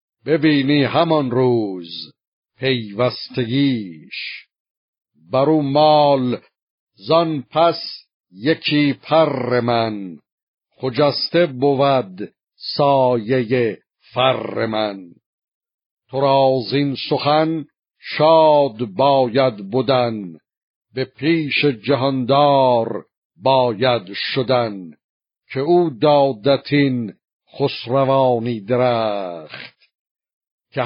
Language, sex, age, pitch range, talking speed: Persian, male, 60-79, 120-145 Hz, 65 wpm